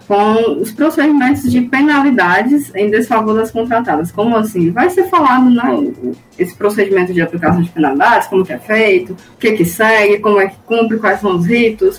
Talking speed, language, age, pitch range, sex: 185 wpm, Portuguese, 20-39, 175-235 Hz, female